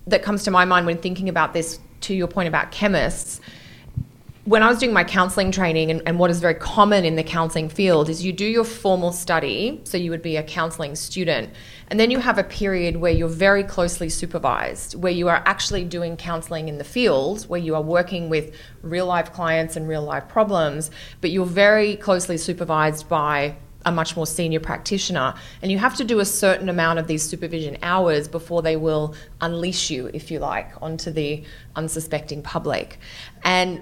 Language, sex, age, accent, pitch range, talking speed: English, female, 20-39, Australian, 160-195 Hz, 200 wpm